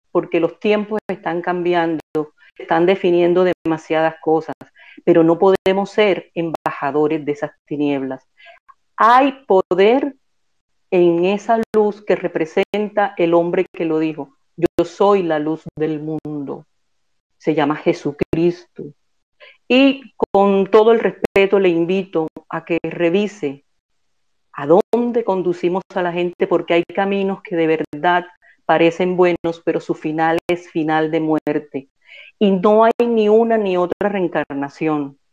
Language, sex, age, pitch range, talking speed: Spanish, female, 40-59, 160-195 Hz, 130 wpm